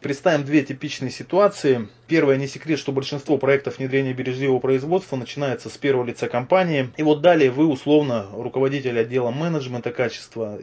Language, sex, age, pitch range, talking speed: Russian, male, 20-39, 120-145 Hz, 150 wpm